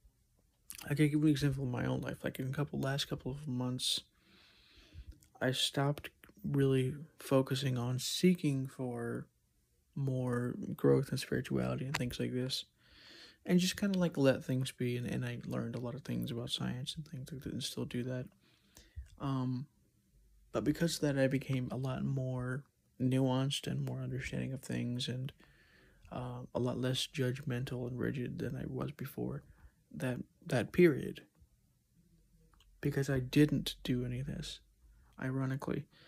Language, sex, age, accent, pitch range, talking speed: English, male, 30-49, American, 105-145 Hz, 160 wpm